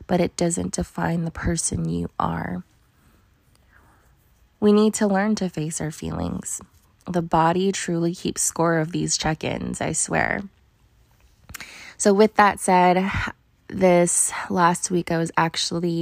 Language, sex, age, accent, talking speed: English, female, 20-39, American, 135 wpm